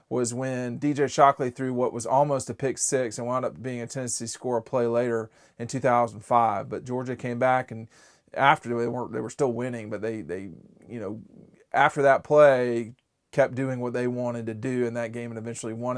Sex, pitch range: male, 120-140 Hz